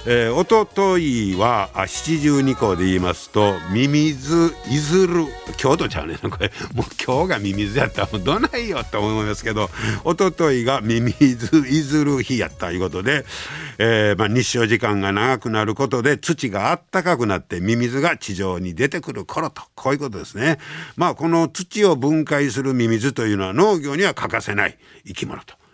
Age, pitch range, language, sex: 60-79, 100-155 Hz, Japanese, male